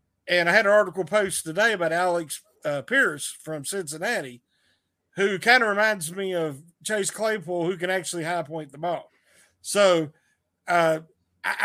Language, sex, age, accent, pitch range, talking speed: English, male, 50-69, American, 165-220 Hz, 155 wpm